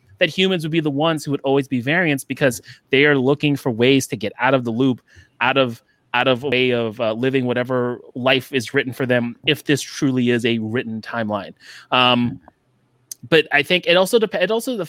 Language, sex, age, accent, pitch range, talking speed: English, male, 20-39, American, 125-145 Hz, 220 wpm